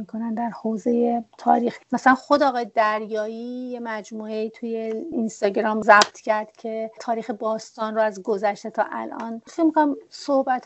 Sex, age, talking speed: female, 40-59, 140 wpm